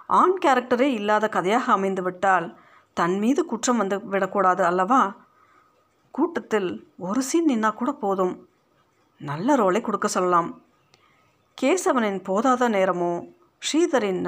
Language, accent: Tamil, native